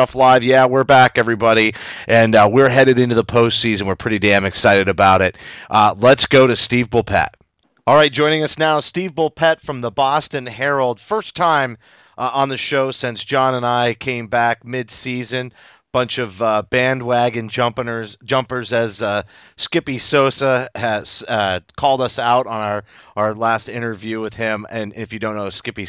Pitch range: 110-135 Hz